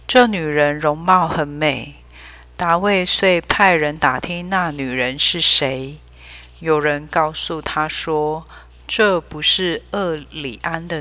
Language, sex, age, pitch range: Chinese, female, 40-59, 135-175 Hz